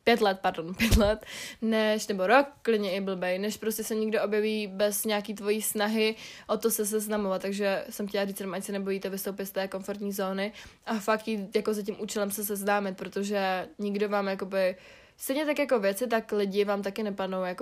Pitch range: 190-215 Hz